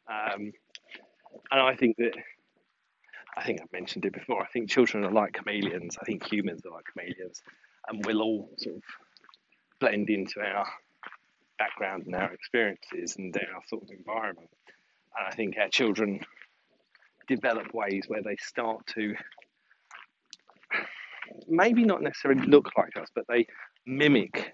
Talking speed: 145 wpm